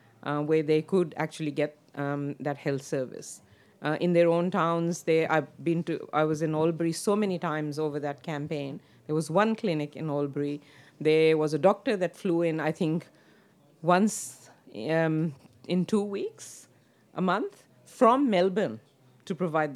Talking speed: 165 wpm